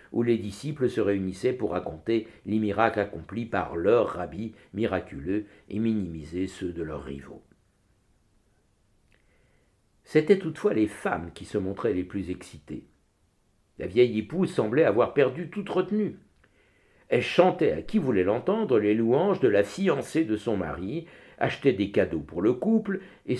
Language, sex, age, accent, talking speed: French, male, 60-79, French, 150 wpm